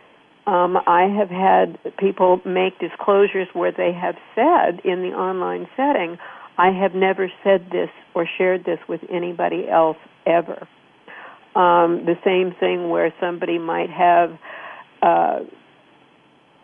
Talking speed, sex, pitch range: 130 wpm, female, 175-200 Hz